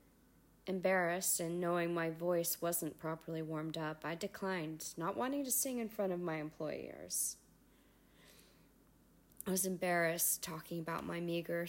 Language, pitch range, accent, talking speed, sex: English, 160-185 Hz, American, 140 wpm, female